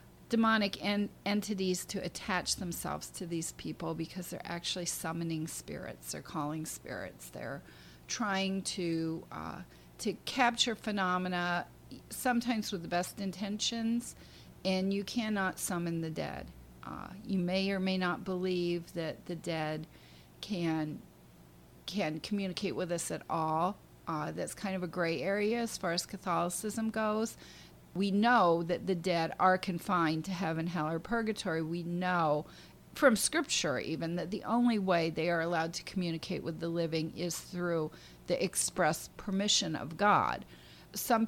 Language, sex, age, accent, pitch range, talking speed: English, female, 40-59, American, 160-195 Hz, 145 wpm